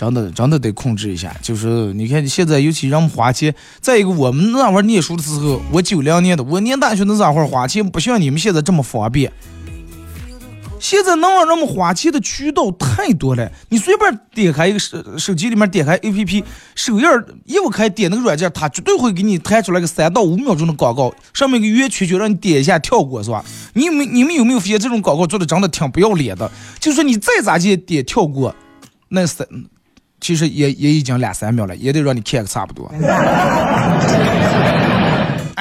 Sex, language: male, Chinese